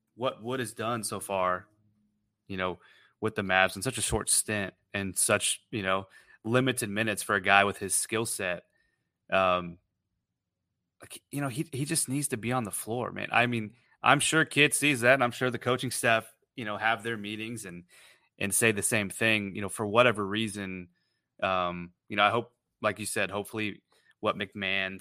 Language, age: English, 30-49